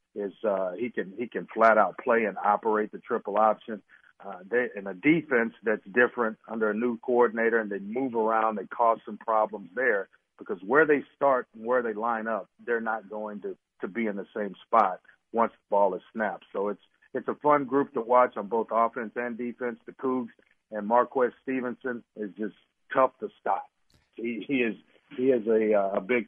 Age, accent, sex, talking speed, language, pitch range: 50-69, American, male, 205 wpm, English, 105-125 Hz